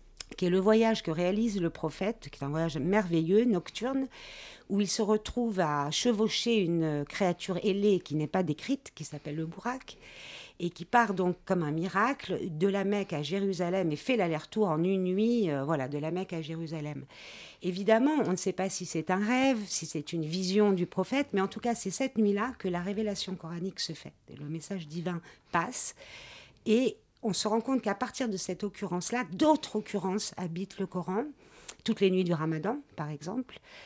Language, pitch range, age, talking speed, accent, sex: French, 170-220 Hz, 50-69, 195 wpm, French, female